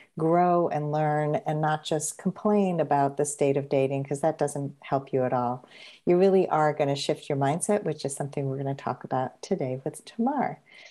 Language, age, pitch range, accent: English, 50-69, 145-185 Hz, American